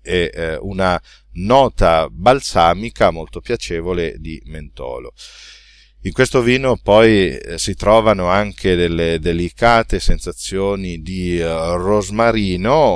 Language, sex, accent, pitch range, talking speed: Italian, male, native, 90-115 Hz, 95 wpm